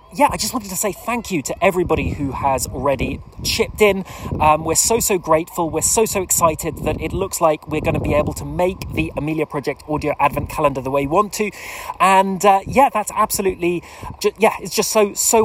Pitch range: 150-205 Hz